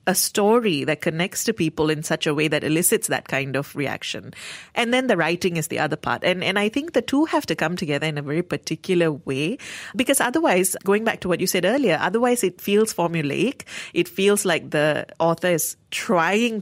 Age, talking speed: 30-49, 215 wpm